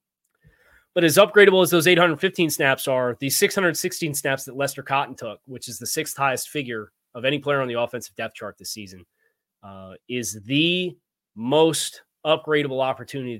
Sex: male